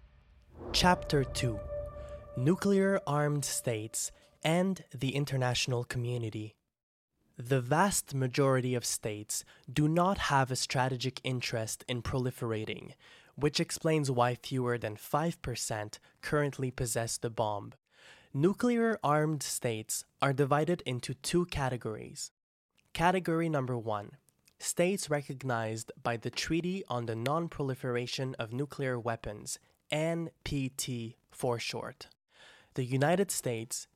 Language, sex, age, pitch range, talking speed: English, male, 20-39, 115-150 Hz, 100 wpm